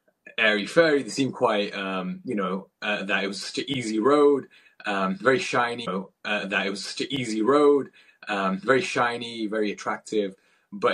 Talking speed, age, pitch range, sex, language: 175 wpm, 20-39, 95-125 Hz, male, English